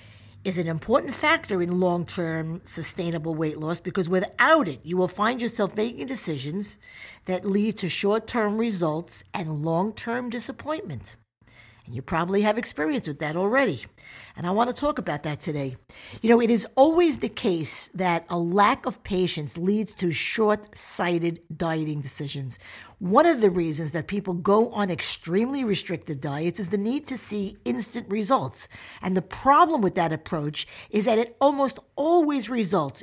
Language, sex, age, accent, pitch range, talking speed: English, female, 50-69, American, 165-225 Hz, 160 wpm